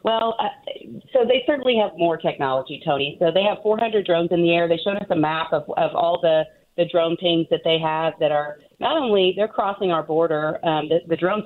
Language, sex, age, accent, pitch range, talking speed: English, female, 40-59, American, 155-185 Hz, 230 wpm